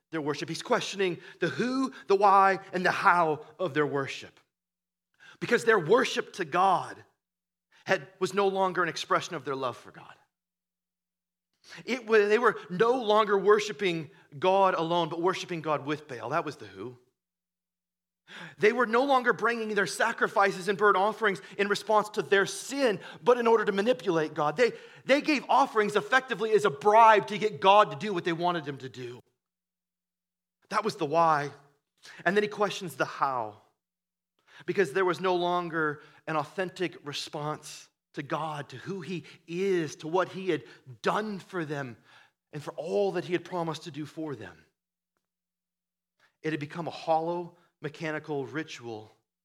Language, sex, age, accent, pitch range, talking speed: English, male, 30-49, American, 155-195 Hz, 165 wpm